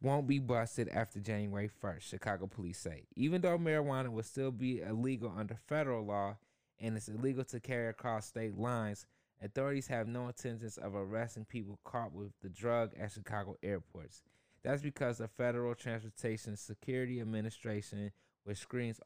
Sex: male